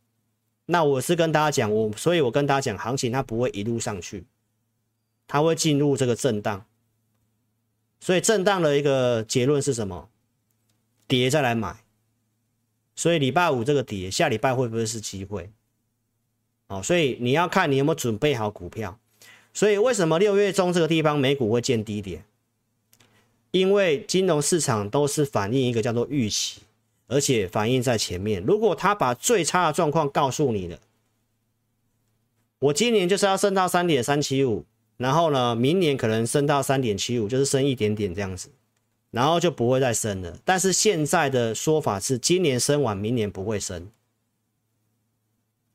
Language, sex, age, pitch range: Chinese, male, 40-59, 110-145 Hz